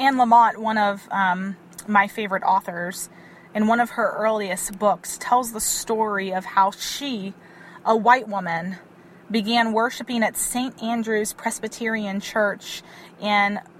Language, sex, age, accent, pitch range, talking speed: English, female, 20-39, American, 200-235 Hz, 135 wpm